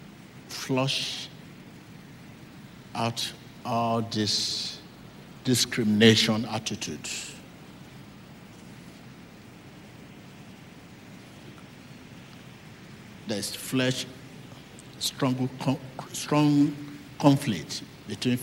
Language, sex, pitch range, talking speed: English, male, 115-140 Hz, 40 wpm